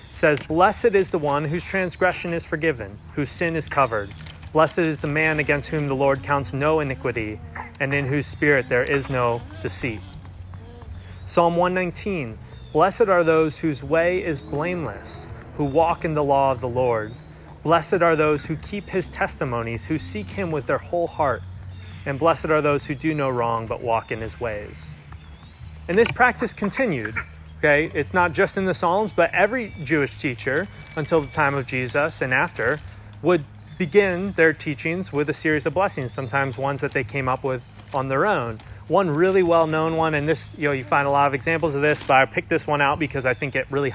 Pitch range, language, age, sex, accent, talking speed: 120-170 Hz, English, 30-49, male, American, 200 wpm